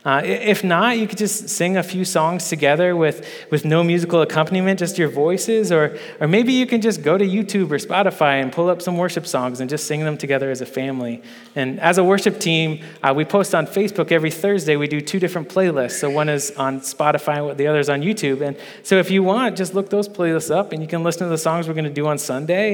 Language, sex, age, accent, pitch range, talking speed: English, male, 20-39, American, 145-190 Hz, 250 wpm